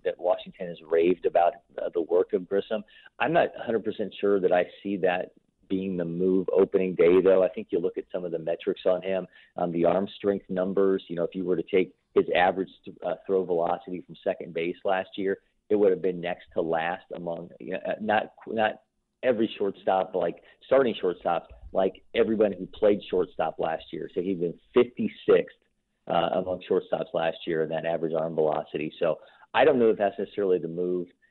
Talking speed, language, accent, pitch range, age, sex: 205 wpm, English, American, 85-100 Hz, 40-59, male